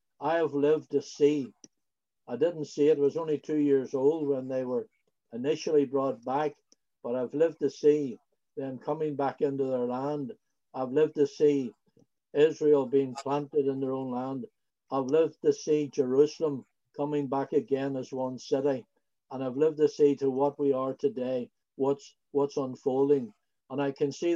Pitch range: 140-160 Hz